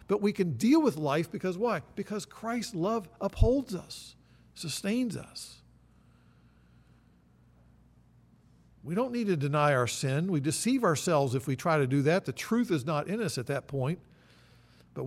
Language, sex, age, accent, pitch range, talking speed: English, male, 50-69, American, 135-200 Hz, 165 wpm